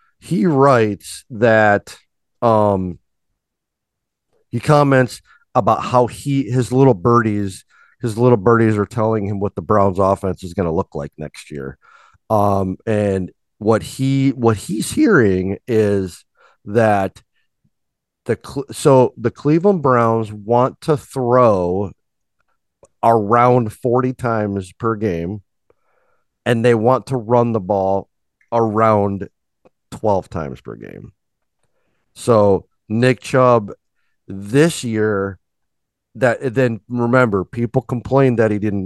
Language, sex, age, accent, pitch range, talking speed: English, male, 40-59, American, 100-125 Hz, 115 wpm